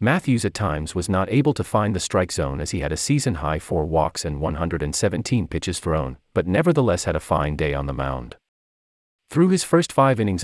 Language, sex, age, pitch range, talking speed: English, male, 40-59, 75-120 Hz, 205 wpm